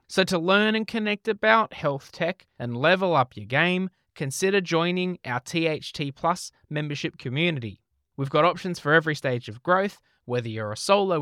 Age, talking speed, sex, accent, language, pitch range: 20-39, 170 wpm, male, Australian, English, 130-180 Hz